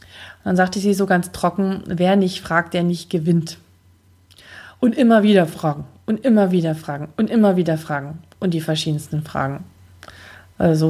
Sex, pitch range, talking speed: female, 130-205 Hz, 160 wpm